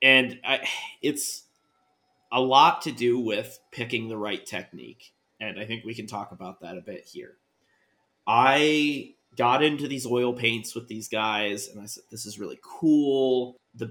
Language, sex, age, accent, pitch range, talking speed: English, male, 30-49, American, 110-135 Hz, 175 wpm